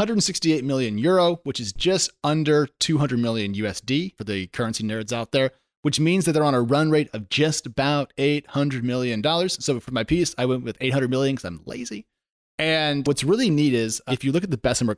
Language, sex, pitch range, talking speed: English, male, 120-150 Hz, 210 wpm